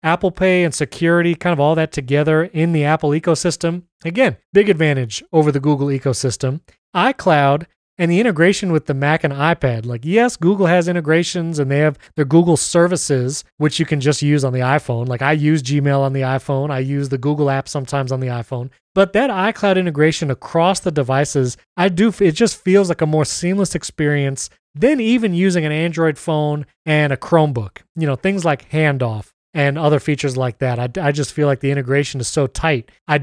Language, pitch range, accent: English, 140-170 Hz, American